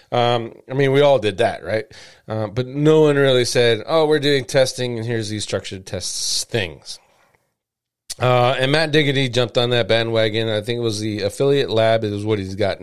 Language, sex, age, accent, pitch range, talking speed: English, male, 30-49, American, 110-130 Hz, 205 wpm